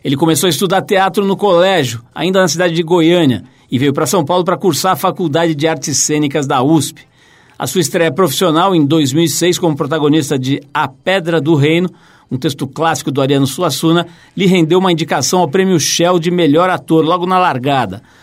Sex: male